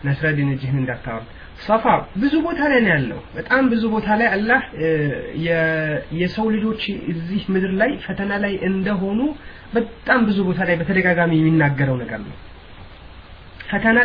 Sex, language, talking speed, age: male, Amharic, 115 wpm, 30-49